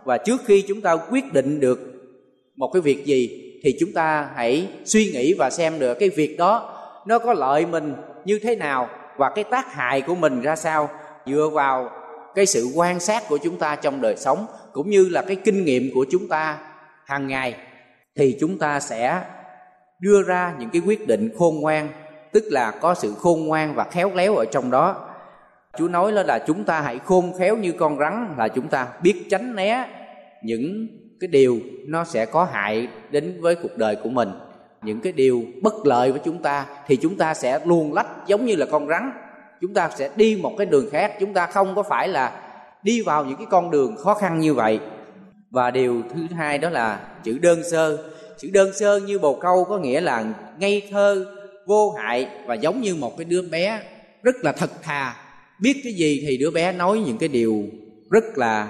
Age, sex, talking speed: 20-39, male, 210 wpm